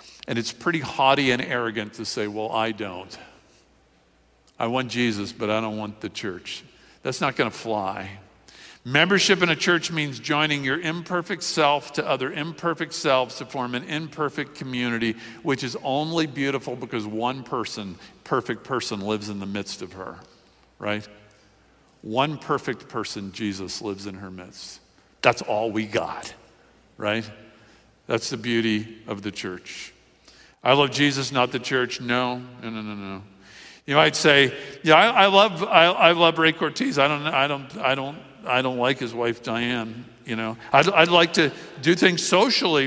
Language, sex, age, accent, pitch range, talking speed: English, male, 50-69, American, 115-160 Hz, 170 wpm